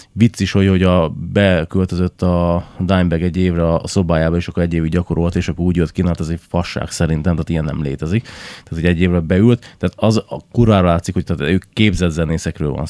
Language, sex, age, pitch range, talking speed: Hungarian, male, 30-49, 85-100 Hz, 215 wpm